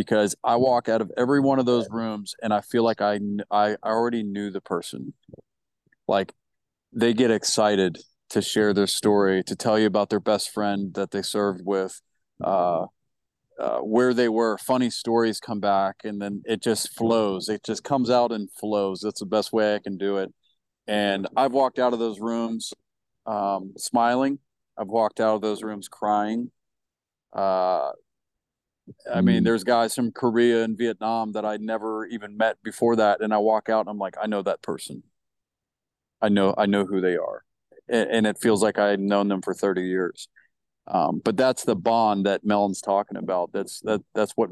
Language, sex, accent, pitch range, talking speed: English, male, American, 100-115 Hz, 190 wpm